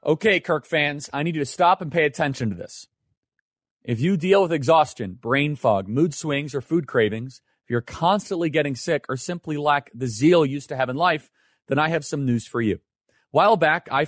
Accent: American